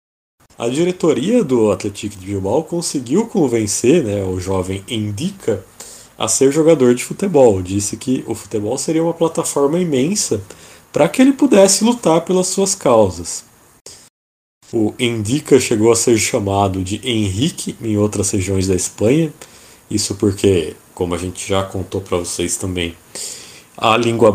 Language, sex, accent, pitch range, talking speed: Portuguese, male, Brazilian, 100-160 Hz, 145 wpm